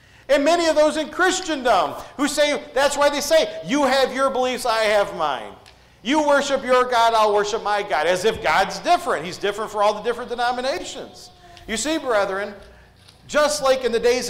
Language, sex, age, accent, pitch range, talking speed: English, male, 40-59, American, 205-270 Hz, 195 wpm